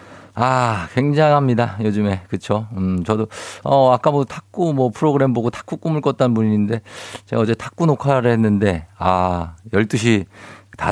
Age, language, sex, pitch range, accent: 50-69, Korean, male, 95-130 Hz, native